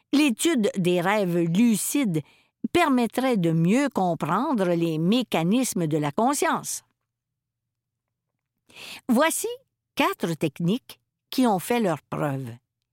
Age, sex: 50-69, female